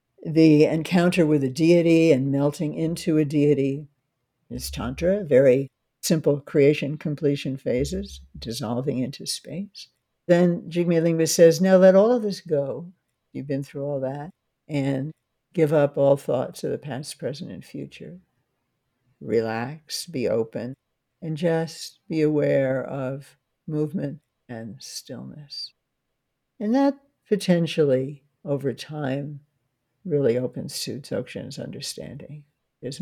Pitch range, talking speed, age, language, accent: 135-170 Hz, 125 wpm, 60-79, English, American